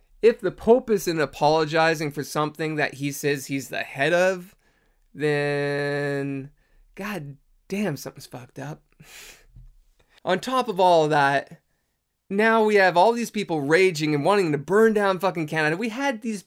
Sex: male